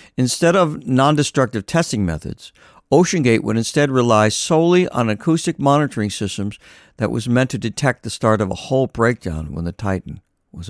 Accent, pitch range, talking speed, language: American, 95-130 Hz, 165 wpm, English